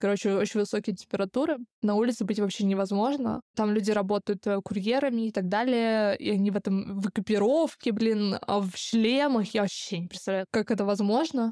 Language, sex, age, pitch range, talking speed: Russian, female, 20-39, 200-230 Hz, 170 wpm